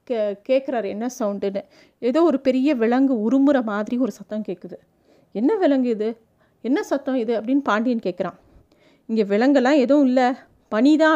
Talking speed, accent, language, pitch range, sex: 145 wpm, native, Tamil, 220-285 Hz, female